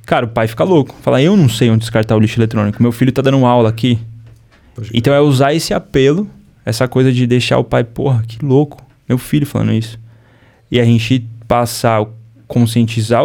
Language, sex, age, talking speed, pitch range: Portuguese, male, 20-39, 195 wpm, 115-145 Hz